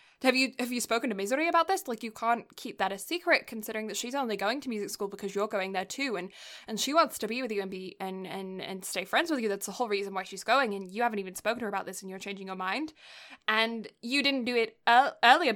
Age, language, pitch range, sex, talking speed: 10-29, English, 195-250 Hz, female, 280 wpm